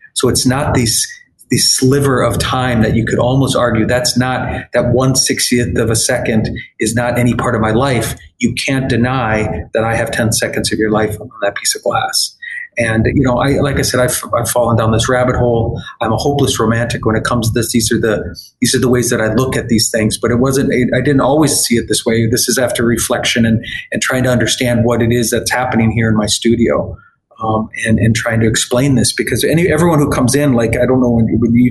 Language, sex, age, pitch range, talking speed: English, male, 30-49, 115-130 Hz, 245 wpm